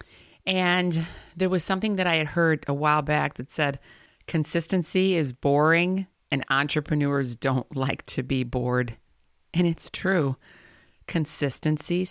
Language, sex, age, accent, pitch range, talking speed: English, female, 40-59, American, 140-170 Hz, 135 wpm